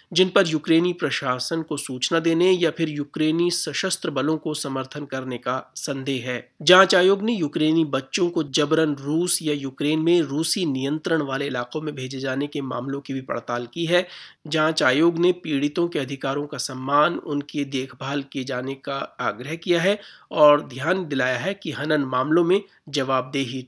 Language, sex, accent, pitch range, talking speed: Hindi, male, native, 135-175 Hz, 110 wpm